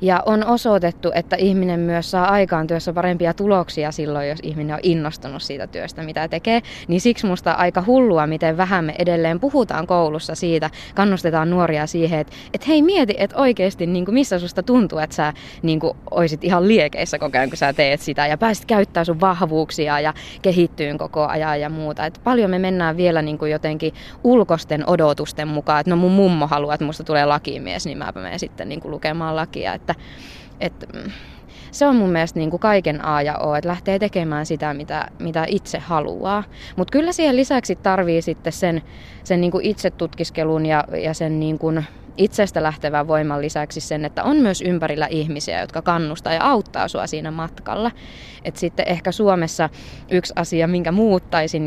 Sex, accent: female, native